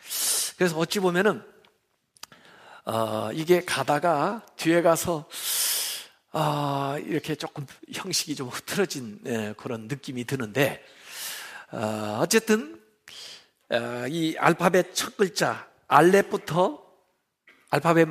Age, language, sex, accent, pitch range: 50-69, Korean, male, native, 140-200 Hz